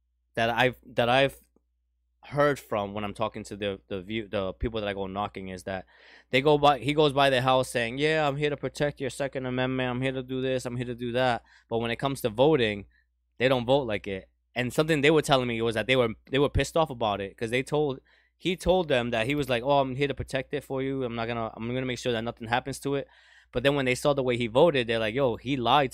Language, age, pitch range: English, 20-39, 110-140 Hz